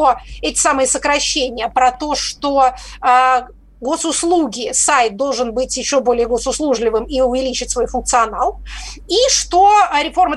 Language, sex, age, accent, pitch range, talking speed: Russian, female, 30-49, native, 255-320 Hz, 115 wpm